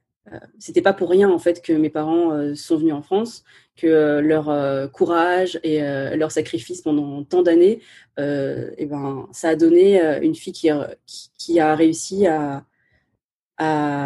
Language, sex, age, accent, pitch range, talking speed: French, female, 30-49, French, 150-190 Hz, 180 wpm